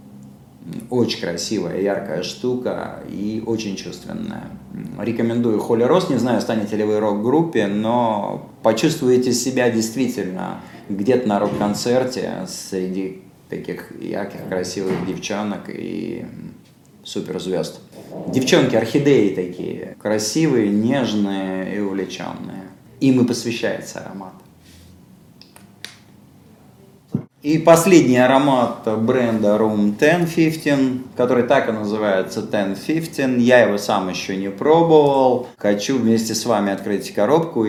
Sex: male